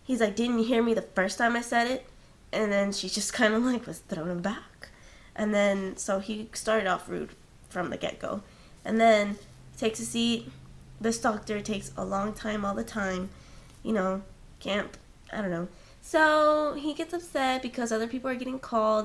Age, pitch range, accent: 20-39, 205-250 Hz, American